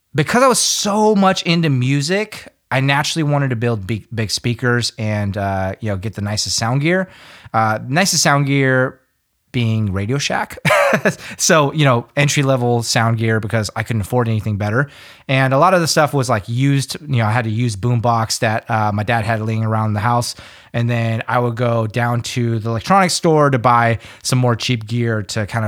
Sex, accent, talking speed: male, American, 205 wpm